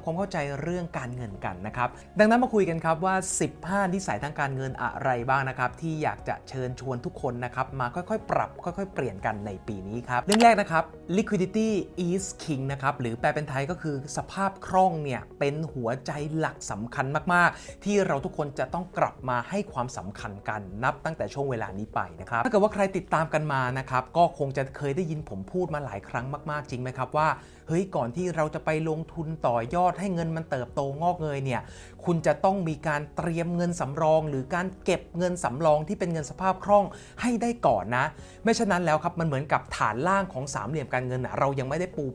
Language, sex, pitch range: English, male, 130-180 Hz